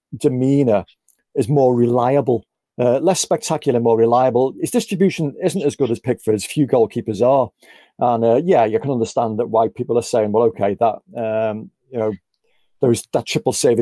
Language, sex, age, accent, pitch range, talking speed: English, male, 40-59, British, 110-140 Hz, 175 wpm